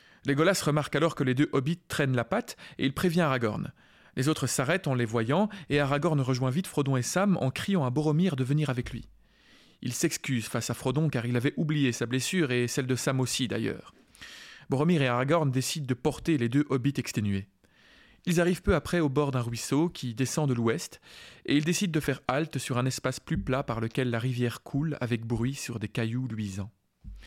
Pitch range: 125-155 Hz